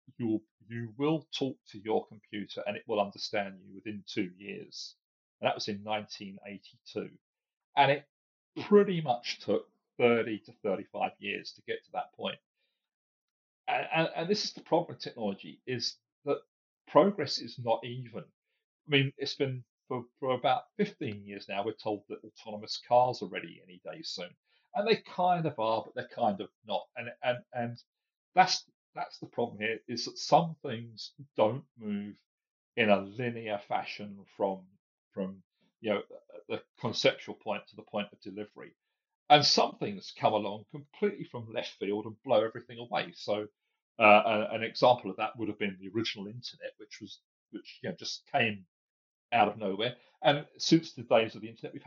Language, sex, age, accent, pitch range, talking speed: English, male, 40-59, British, 105-145 Hz, 180 wpm